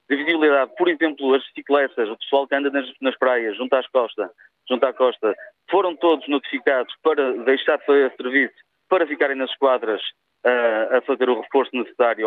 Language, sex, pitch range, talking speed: Portuguese, male, 135-170 Hz, 180 wpm